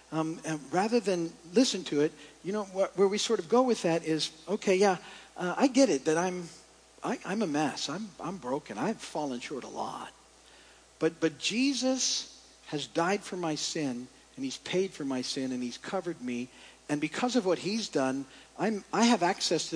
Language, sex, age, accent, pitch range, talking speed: English, male, 50-69, American, 155-195 Hz, 205 wpm